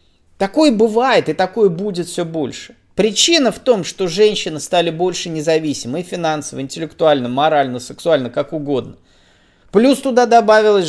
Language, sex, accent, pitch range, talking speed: Russian, male, native, 155-215 Hz, 130 wpm